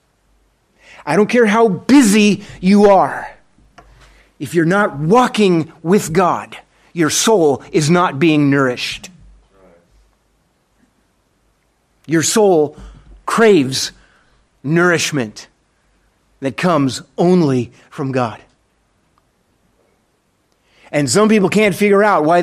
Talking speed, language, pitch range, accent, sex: 95 wpm, English, 120-165 Hz, American, male